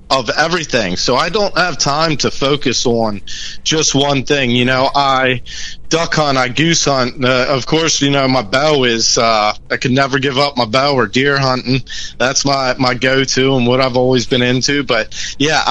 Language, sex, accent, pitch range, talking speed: English, male, American, 130-155 Hz, 200 wpm